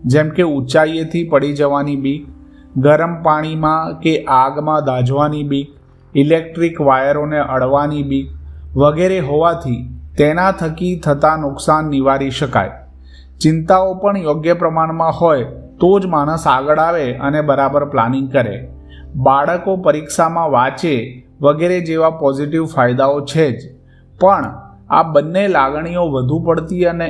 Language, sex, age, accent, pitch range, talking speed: Gujarati, male, 30-49, native, 135-165 Hz, 65 wpm